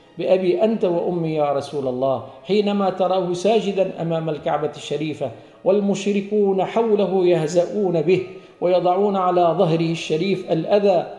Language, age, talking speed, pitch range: Arabic, 50-69, 115 wpm, 155-205 Hz